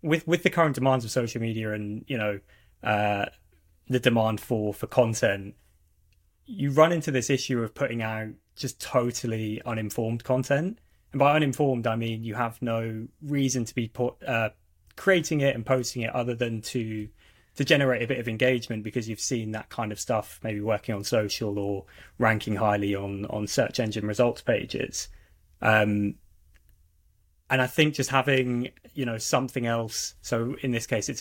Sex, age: male, 20-39